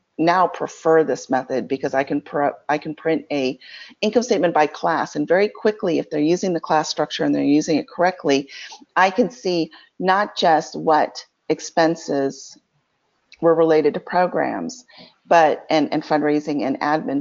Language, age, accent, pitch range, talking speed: English, 40-59, American, 145-175 Hz, 165 wpm